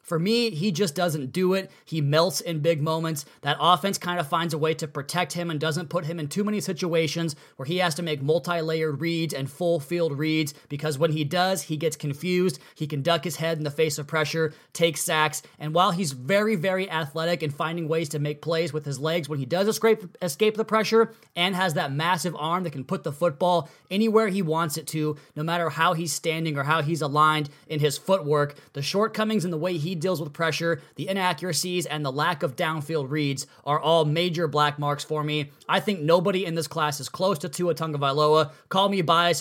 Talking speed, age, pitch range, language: 220 wpm, 30-49, 155-180 Hz, English